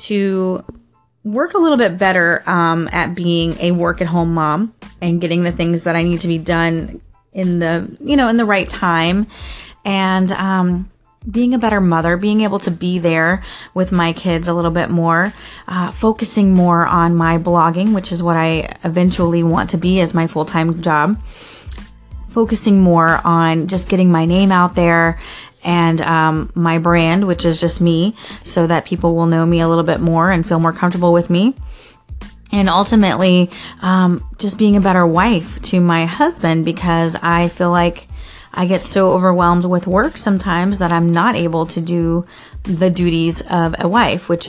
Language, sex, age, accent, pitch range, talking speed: English, female, 30-49, American, 165-190 Hz, 180 wpm